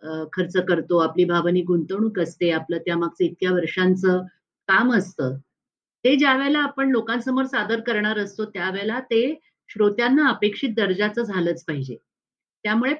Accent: native